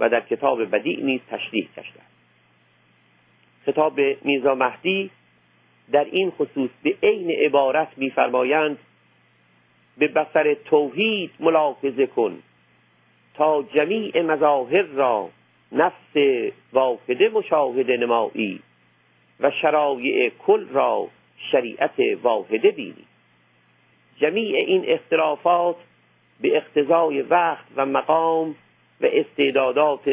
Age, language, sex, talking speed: 50-69, Persian, male, 95 wpm